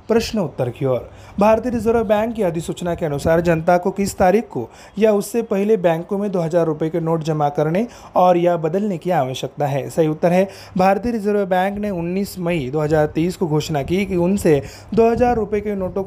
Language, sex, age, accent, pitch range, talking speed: Marathi, male, 30-49, native, 165-210 Hz, 195 wpm